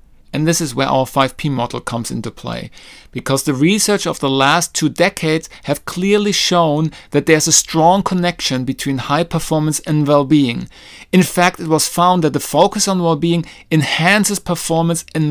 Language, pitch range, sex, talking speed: English, 145-175 Hz, male, 175 wpm